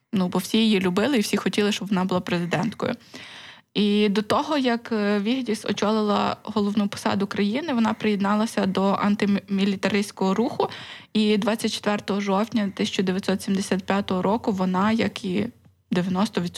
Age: 20-39